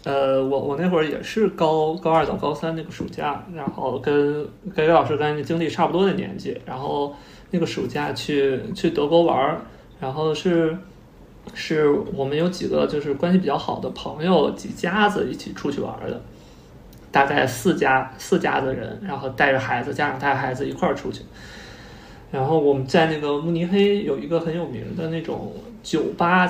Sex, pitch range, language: male, 150-200 Hz, Chinese